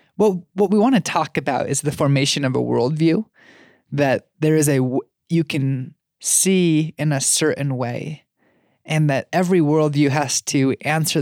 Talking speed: 165 wpm